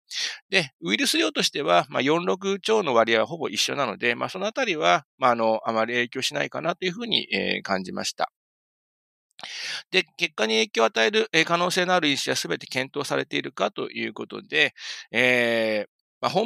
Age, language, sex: 40-59, Japanese, male